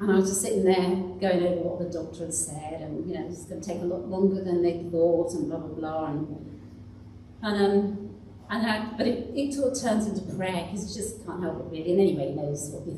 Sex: female